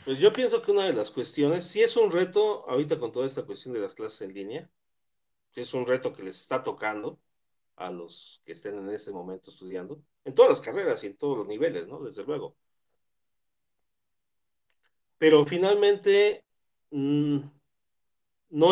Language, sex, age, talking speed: Spanish, male, 40-59, 175 wpm